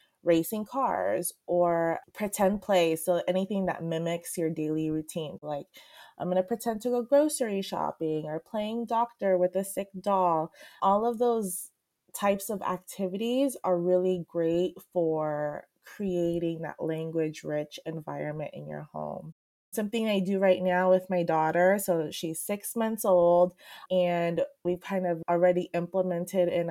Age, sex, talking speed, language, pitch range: 20-39, female, 150 wpm, English, 170-205 Hz